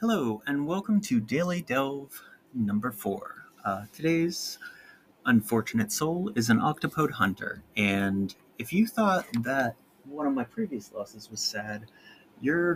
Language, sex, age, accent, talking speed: English, male, 30-49, American, 135 wpm